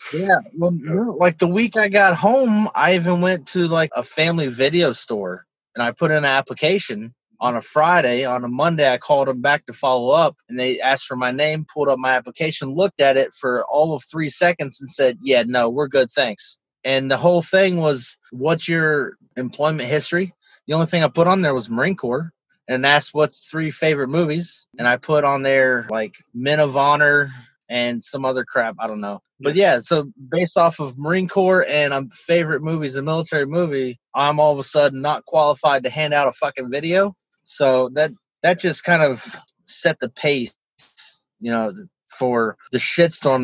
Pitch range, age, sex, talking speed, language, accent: 130-165 Hz, 30-49, male, 200 wpm, English, American